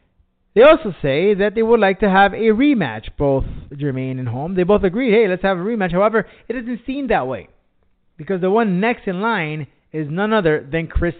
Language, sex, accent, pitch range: English, male, American, 150-210 Hz